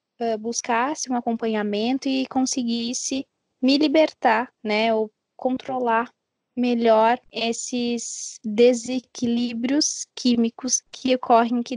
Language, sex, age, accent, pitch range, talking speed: Portuguese, female, 10-29, Brazilian, 225-260 Hz, 85 wpm